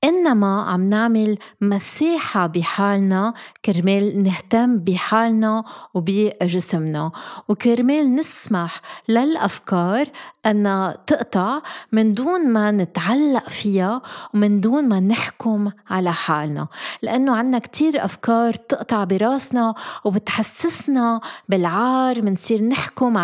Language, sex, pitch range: Arabic, female, 195-245 Hz